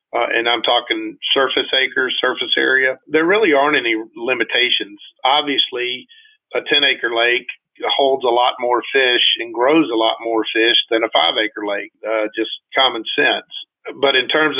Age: 50-69